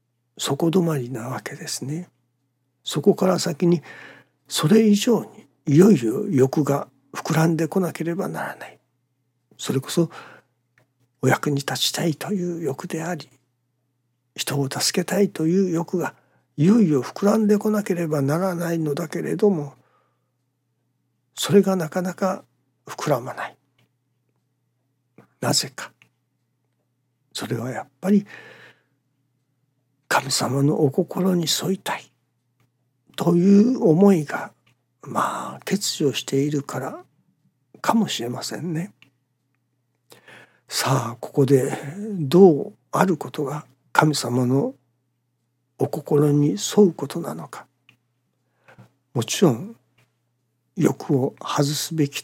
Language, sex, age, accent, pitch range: Japanese, male, 60-79, native, 125-175 Hz